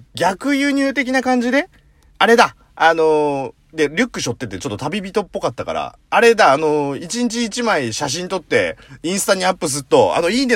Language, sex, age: Japanese, male, 40-59